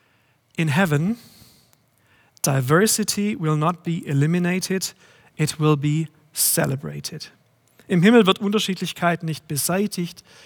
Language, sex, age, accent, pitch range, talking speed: German, male, 40-59, German, 150-185 Hz, 100 wpm